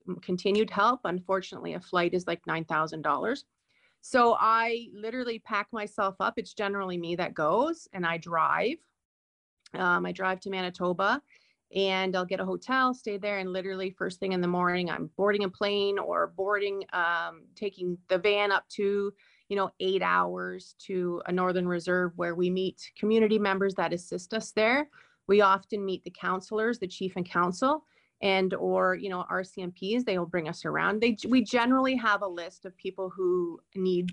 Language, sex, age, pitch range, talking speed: English, female, 30-49, 180-210 Hz, 175 wpm